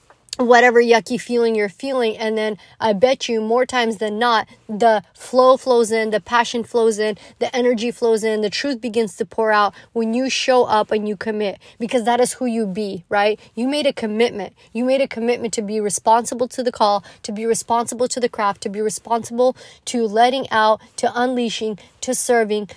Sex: female